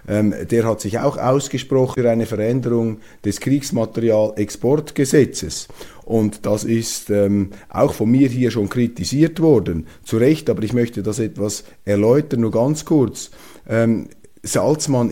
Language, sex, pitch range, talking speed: German, male, 110-140 Hz, 135 wpm